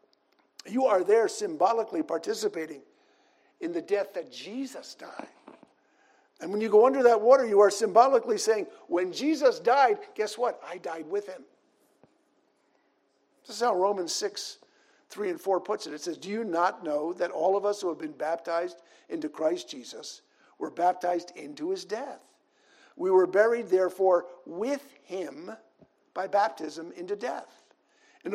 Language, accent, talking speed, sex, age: English, American, 155 wpm, male, 50-69